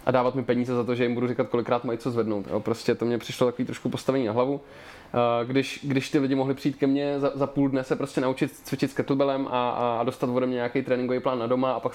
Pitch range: 125-140 Hz